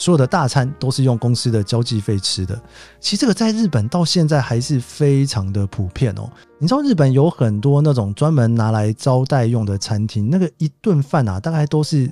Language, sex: Chinese, male